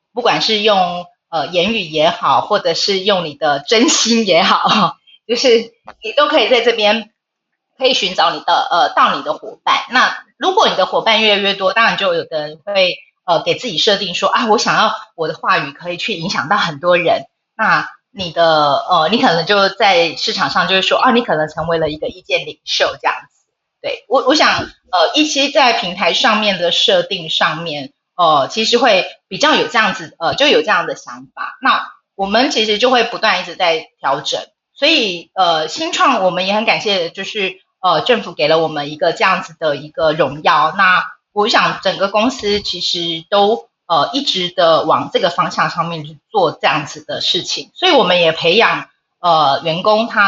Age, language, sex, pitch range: 30-49, Chinese, female, 175-250 Hz